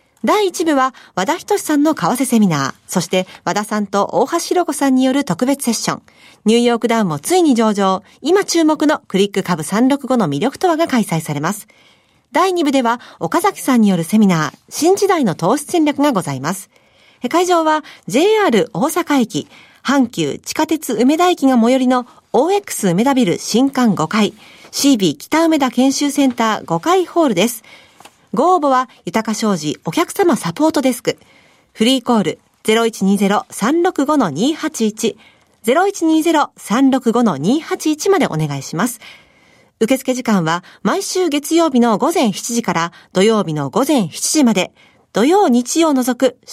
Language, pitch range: Japanese, 210-310 Hz